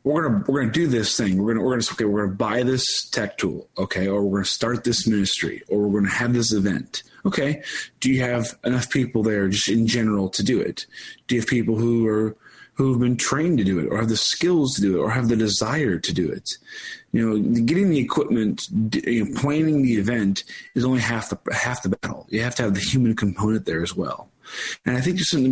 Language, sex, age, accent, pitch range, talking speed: English, male, 30-49, American, 105-130 Hz, 240 wpm